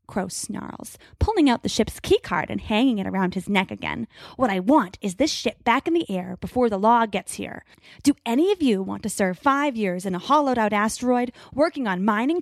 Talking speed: 220 wpm